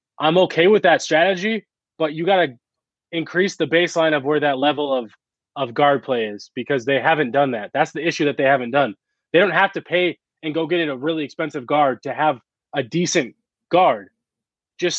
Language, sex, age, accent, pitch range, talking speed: English, male, 20-39, American, 145-175 Hz, 210 wpm